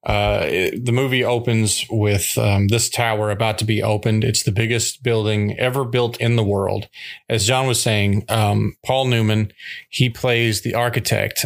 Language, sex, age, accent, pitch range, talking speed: English, male, 30-49, American, 105-120 Hz, 170 wpm